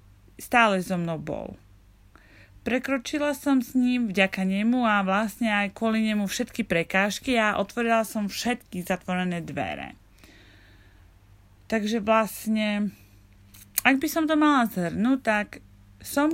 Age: 30-49